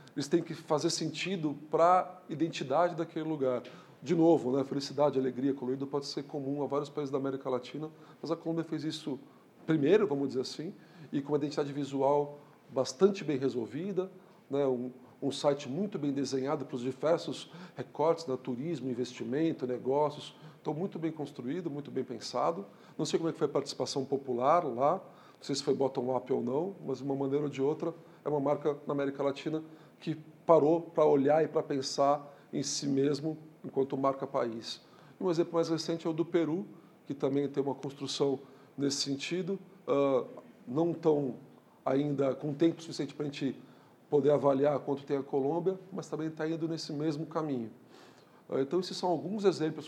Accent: Brazilian